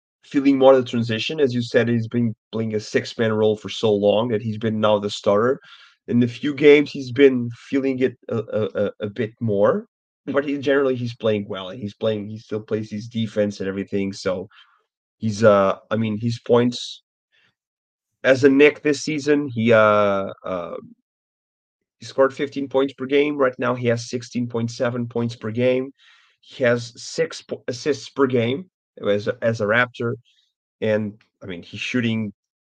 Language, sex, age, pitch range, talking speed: English, male, 30-49, 105-130 Hz, 175 wpm